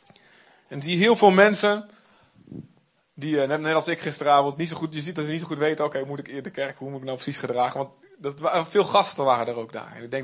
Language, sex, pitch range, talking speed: Dutch, male, 140-180 Hz, 265 wpm